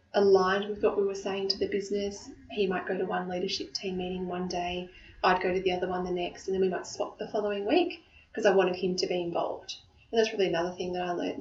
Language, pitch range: English, 175-205 Hz